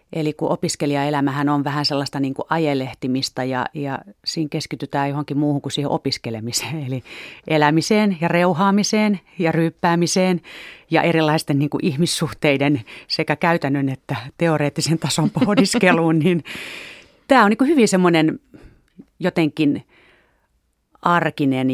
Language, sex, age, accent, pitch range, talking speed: Finnish, female, 30-49, native, 130-165 Hz, 120 wpm